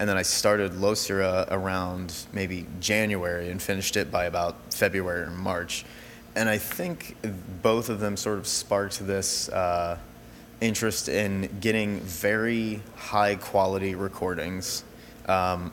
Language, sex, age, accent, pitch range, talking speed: English, male, 20-39, American, 95-110 Hz, 130 wpm